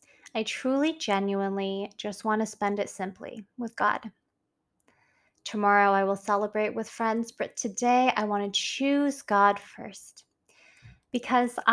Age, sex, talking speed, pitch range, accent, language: 20-39, female, 135 wpm, 200-230 Hz, American, English